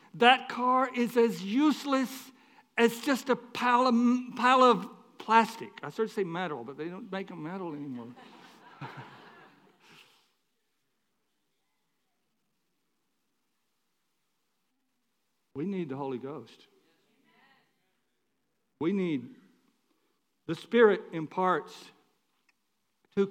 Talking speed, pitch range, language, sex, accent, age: 90 wpm, 160-230 Hz, English, male, American, 60-79